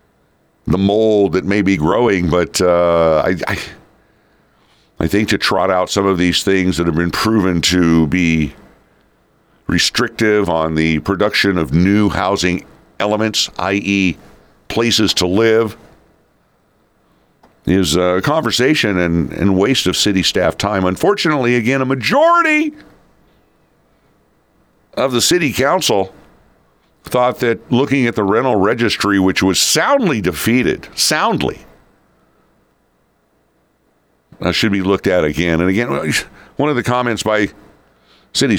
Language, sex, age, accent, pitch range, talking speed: English, male, 60-79, American, 85-110 Hz, 125 wpm